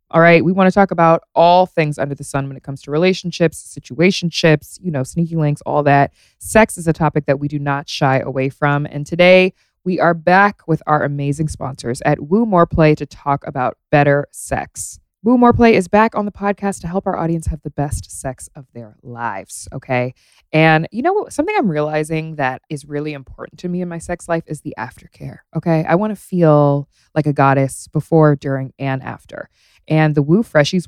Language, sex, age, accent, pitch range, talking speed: English, female, 20-39, American, 140-175 Hz, 210 wpm